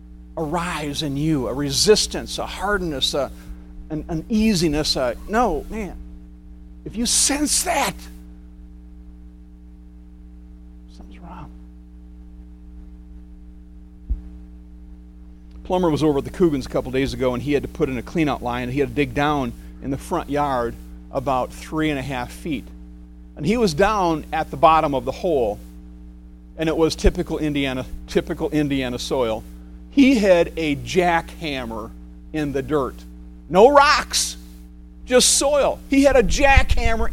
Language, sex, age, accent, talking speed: English, male, 40-59, American, 140 wpm